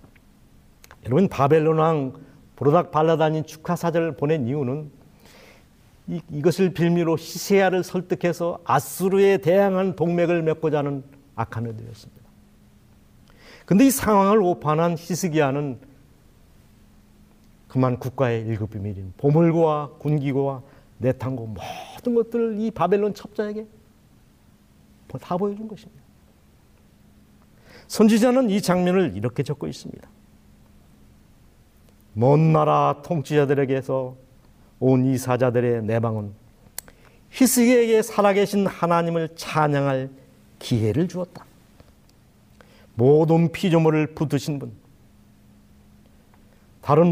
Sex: male